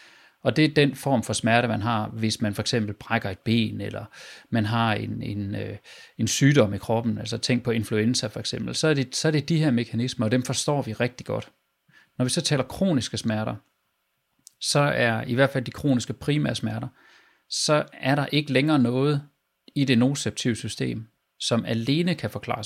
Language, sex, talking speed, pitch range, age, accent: Danish, male, 190 wpm, 110-135 Hz, 30-49, native